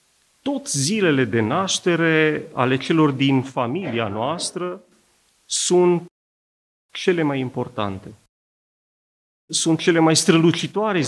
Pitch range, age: 130-180 Hz, 40-59